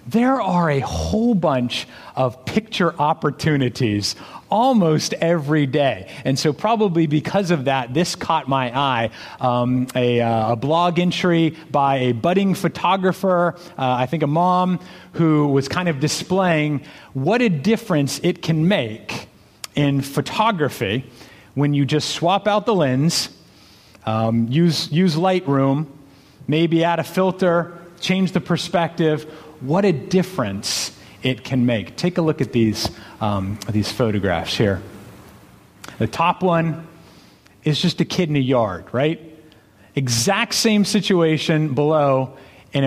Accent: American